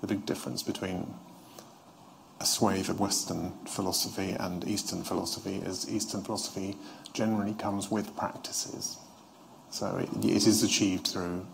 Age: 30-49